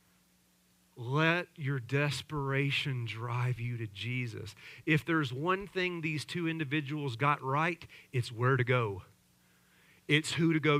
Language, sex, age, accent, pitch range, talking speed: English, male, 40-59, American, 120-155 Hz, 135 wpm